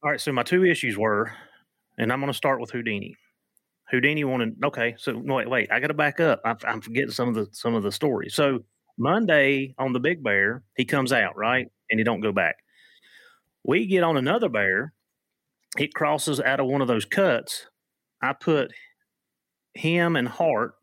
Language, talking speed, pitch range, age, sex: English, 195 wpm, 115-145 Hz, 30-49, male